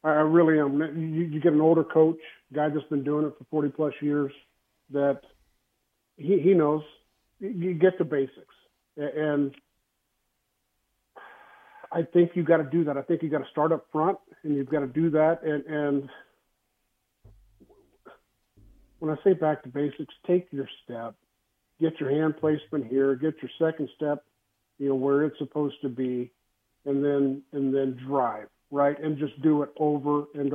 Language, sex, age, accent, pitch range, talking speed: English, male, 50-69, American, 140-165 Hz, 170 wpm